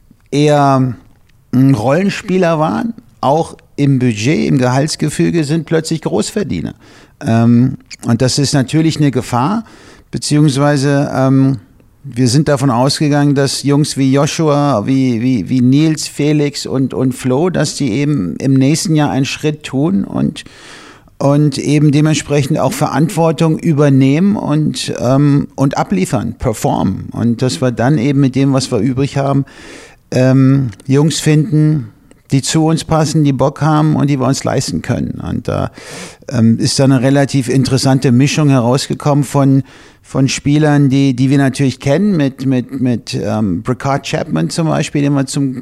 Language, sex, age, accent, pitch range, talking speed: German, male, 50-69, German, 130-150 Hz, 145 wpm